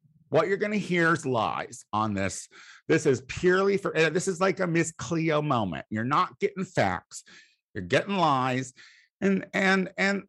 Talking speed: 170 wpm